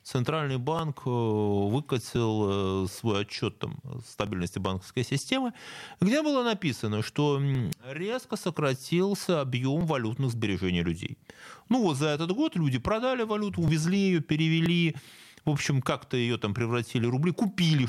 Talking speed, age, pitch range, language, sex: 135 wpm, 30-49, 110-155 Hz, Russian, male